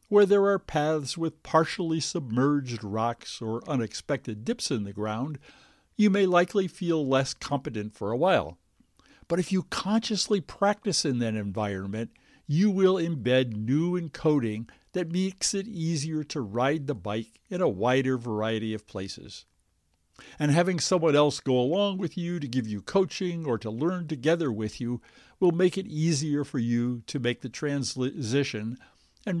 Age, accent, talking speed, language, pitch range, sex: 60-79, American, 160 wpm, English, 115-170 Hz, male